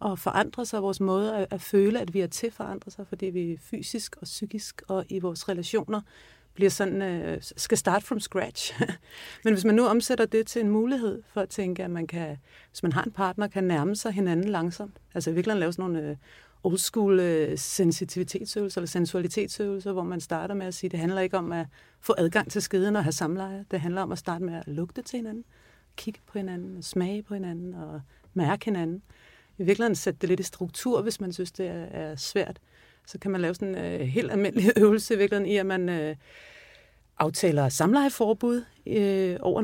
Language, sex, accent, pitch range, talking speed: Danish, female, native, 175-210 Hz, 195 wpm